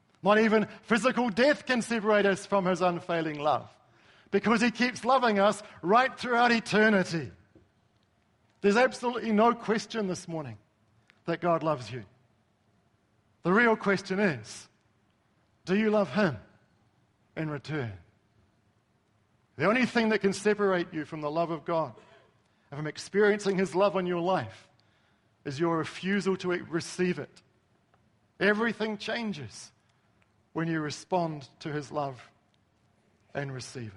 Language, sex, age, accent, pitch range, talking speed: English, male, 50-69, Australian, 110-185 Hz, 130 wpm